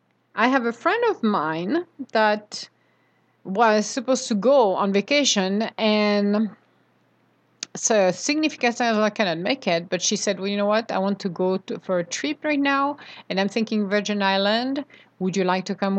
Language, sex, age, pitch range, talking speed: English, female, 50-69, 185-250 Hz, 175 wpm